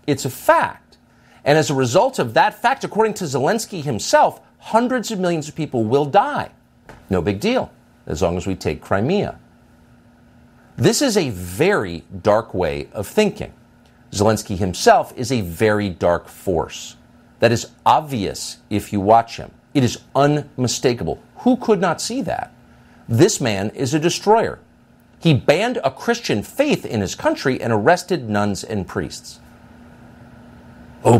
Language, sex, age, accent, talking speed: English, male, 50-69, American, 150 wpm